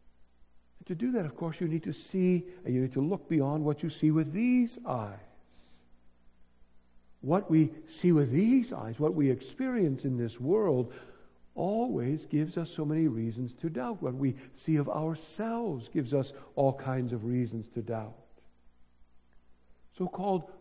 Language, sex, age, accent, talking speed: English, male, 60-79, American, 160 wpm